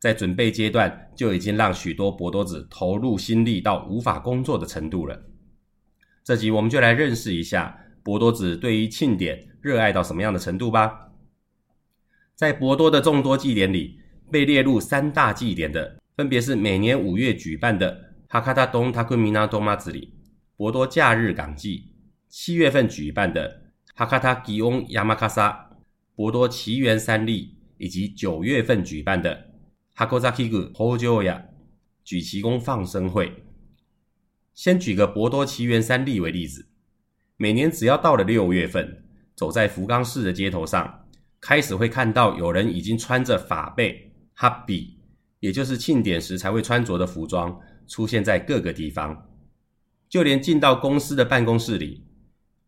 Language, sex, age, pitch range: Chinese, male, 30-49, 95-125 Hz